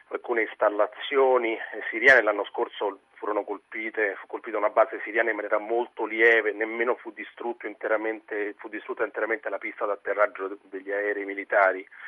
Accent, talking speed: native, 135 wpm